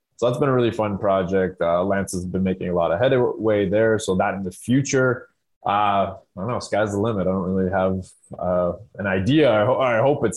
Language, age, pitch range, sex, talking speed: English, 20-39, 95-120 Hz, male, 235 wpm